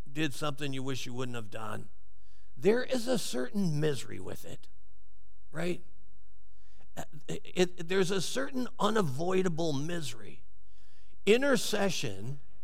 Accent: American